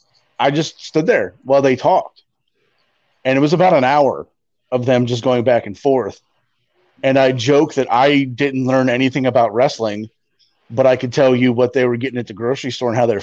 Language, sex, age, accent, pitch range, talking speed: English, male, 30-49, American, 115-140 Hz, 210 wpm